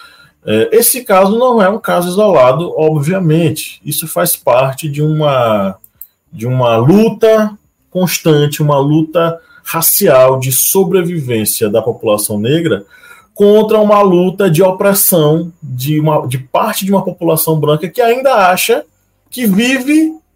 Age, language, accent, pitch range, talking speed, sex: 20-39, Portuguese, Brazilian, 120-185 Hz, 120 wpm, male